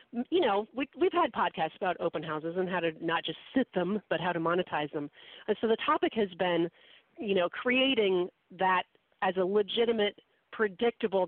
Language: English